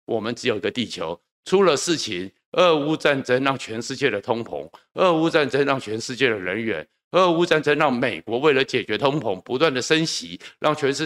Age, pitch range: 50-69, 125-160 Hz